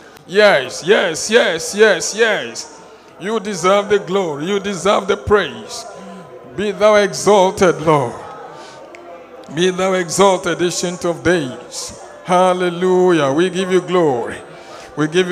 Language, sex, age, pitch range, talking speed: English, male, 60-79, 185-255 Hz, 120 wpm